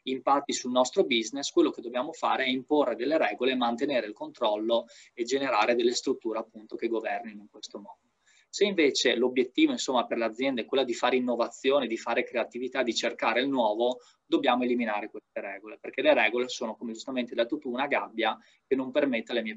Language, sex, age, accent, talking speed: Italian, male, 20-39, native, 190 wpm